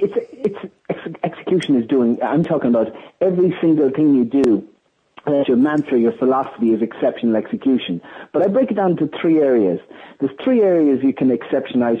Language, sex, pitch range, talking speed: English, male, 135-180 Hz, 180 wpm